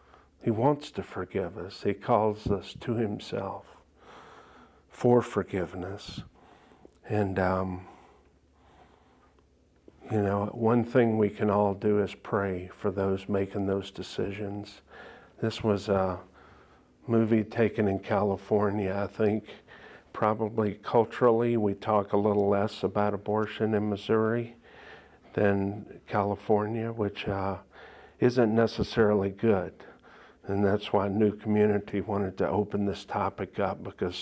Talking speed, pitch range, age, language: 120 wpm, 95-110 Hz, 50-69, English